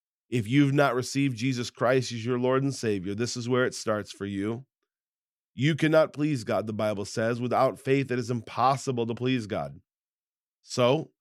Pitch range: 115-145 Hz